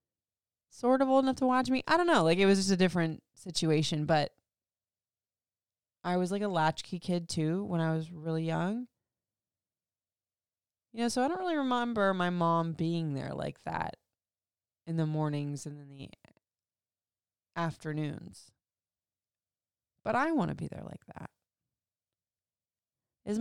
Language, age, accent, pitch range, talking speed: English, 20-39, American, 145-225 Hz, 150 wpm